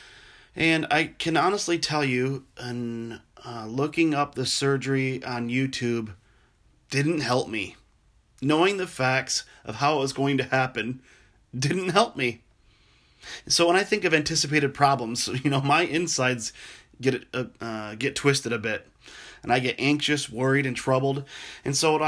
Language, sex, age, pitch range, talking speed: English, male, 30-49, 130-150 Hz, 160 wpm